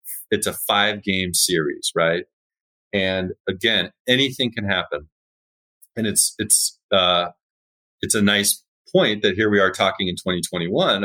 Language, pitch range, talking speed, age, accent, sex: English, 90-120 Hz, 135 wpm, 40-59, American, male